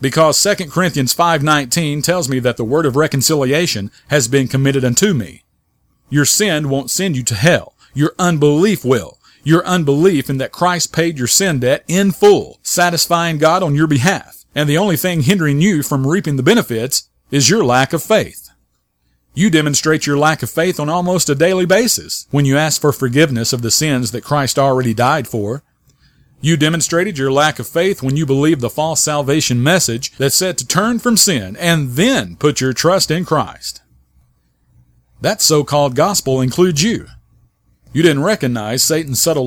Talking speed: 180 wpm